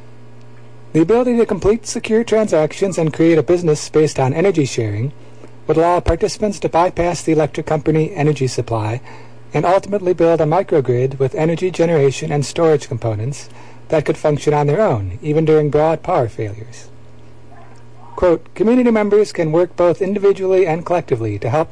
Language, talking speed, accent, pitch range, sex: English, 155 wpm, American, 115-165 Hz, male